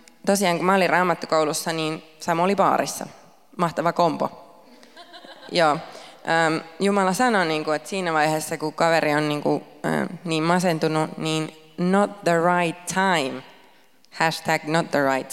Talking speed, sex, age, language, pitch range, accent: 115 wpm, female, 20-39, Finnish, 150-175 Hz, native